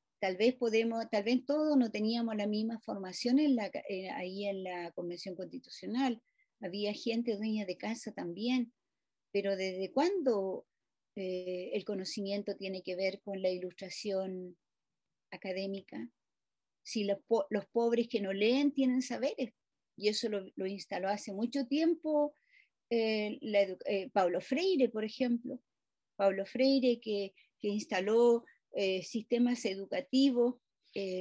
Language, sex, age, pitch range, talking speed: Spanish, female, 40-59, 195-265 Hz, 140 wpm